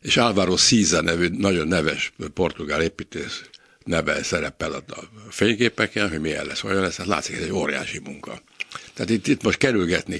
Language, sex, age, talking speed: Hungarian, male, 60-79, 160 wpm